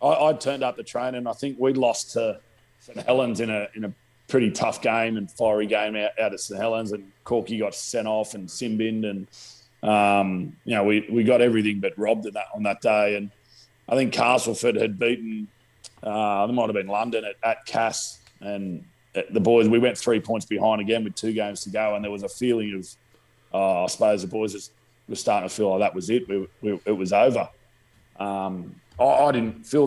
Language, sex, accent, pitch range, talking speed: English, male, Australian, 105-120 Hz, 215 wpm